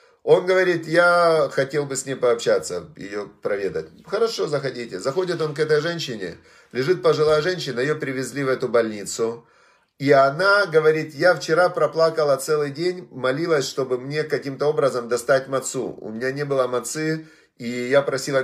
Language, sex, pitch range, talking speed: Russian, male, 125-170 Hz, 155 wpm